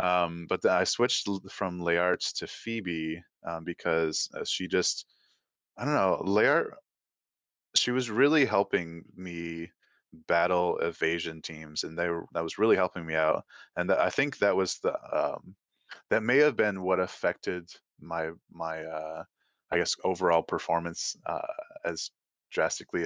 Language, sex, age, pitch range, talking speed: English, male, 20-39, 80-95 Hz, 155 wpm